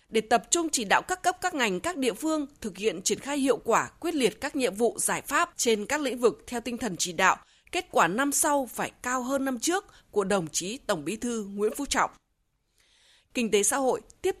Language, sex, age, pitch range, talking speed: Vietnamese, female, 20-39, 205-275 Hz, 240 wpm